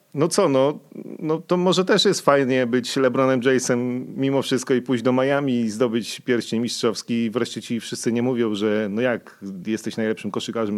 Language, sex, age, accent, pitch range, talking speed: Polish, male, 40-59, native, 100-130 Hz, 185 wpm